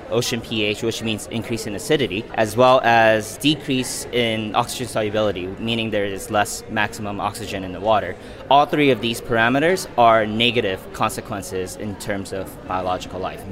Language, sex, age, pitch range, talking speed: English, male, 20-39, 100-120 Hz, 160 wpm